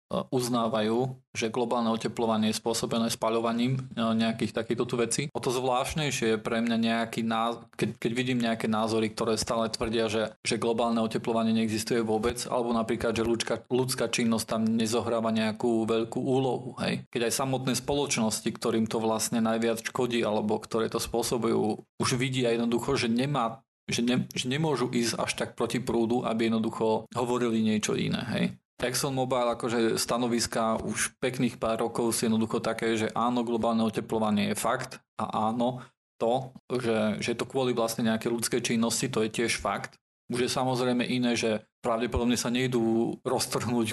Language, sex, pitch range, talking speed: Slovak, male, 115-125 Hz, 160 wpm